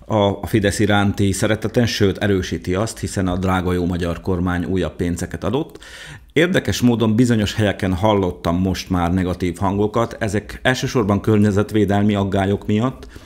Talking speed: 135 wpm